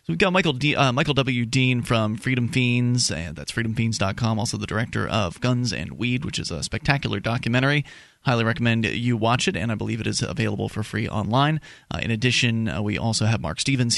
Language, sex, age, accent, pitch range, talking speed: English, male, 30-49, American, 115-140 Hz, 215 wpm